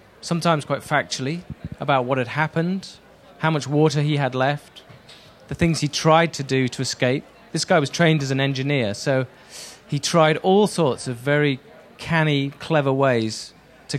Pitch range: 120-150 Hz